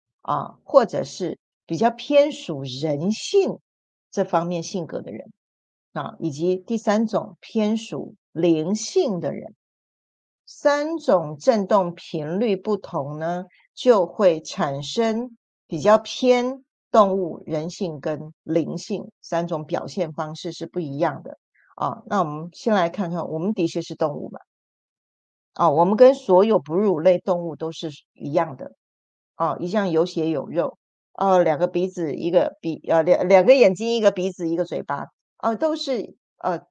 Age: 50-69